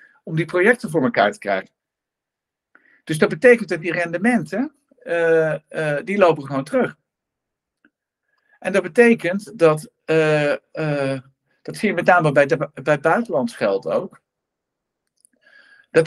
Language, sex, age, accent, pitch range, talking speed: Dutch, male, 50-69, Dutch, 150-225 Hz, 135 wpm